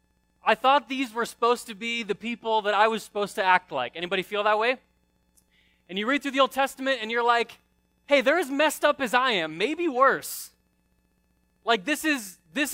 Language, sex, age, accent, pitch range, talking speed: English, male, 20-39, American, 205-260 Hz, 205 wpm